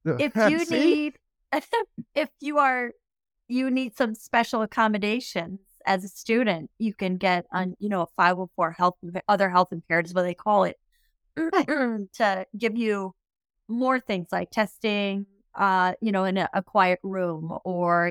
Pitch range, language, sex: 180-230 Hz, English, female